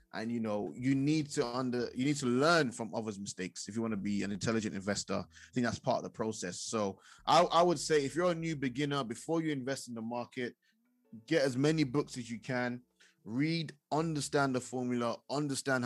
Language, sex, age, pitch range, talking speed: English, male, 20-39, 105-135 Hz, 215 wpm